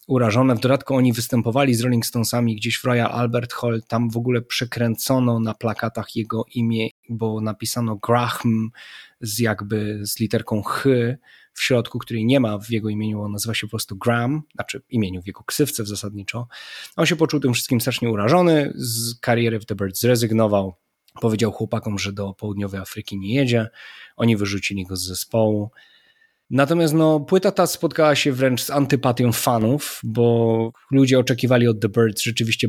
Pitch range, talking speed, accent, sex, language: 110-130 Hz, 170 wpm, native, male, Polish